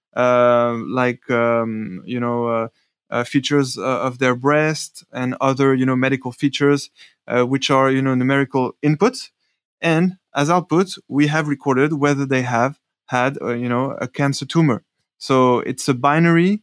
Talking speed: 160 wpm